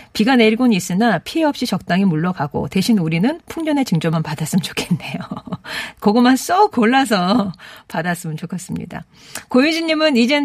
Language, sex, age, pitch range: Korean, female, 40-59, 170-245 Hz